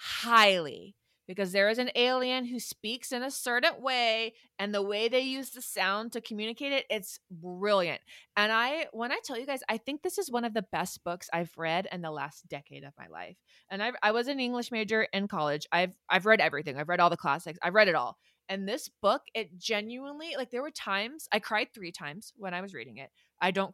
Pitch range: 175-225 Hz